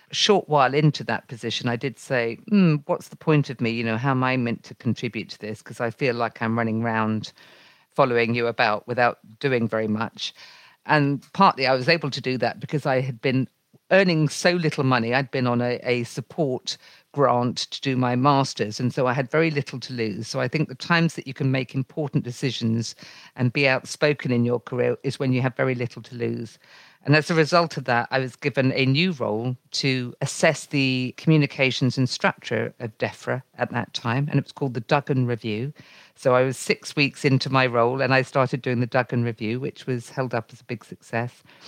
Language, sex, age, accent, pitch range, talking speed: English, female, 50-69, British, 120-145 Hz, 215 wpm